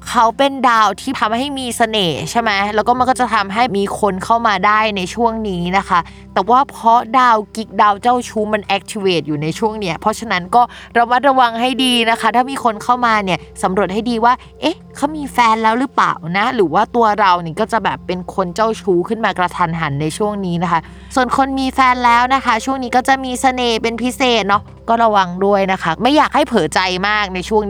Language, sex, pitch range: Thai, female, 180-235 Hz